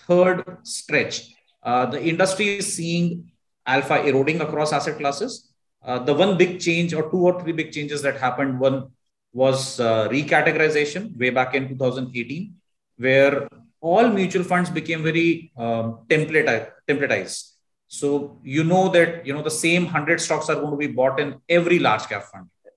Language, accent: English, Indian